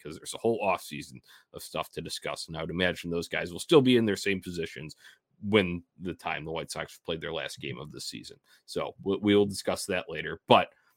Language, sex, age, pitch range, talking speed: English, male, 30-49, 95-115 Hz, 230 wpm